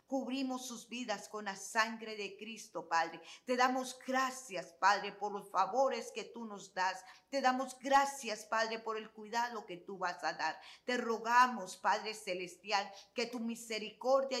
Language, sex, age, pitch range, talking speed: Spanish, female, 40-59, 205-250 Hz, 160 wpm